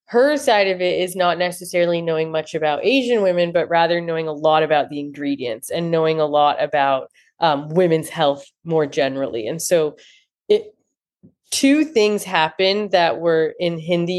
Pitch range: 160-195 Hz